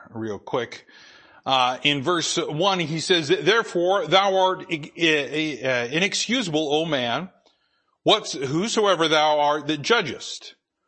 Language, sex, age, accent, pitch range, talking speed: English, male, 40-59, American, 140-190 Hz, 105 wpm